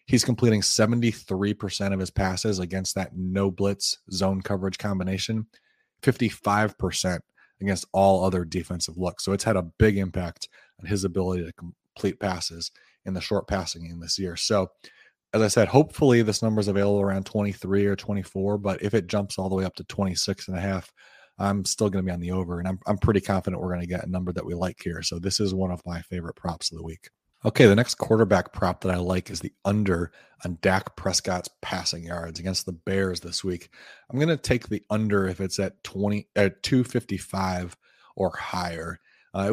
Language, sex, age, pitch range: English, male, 30-49, 90-105 Hz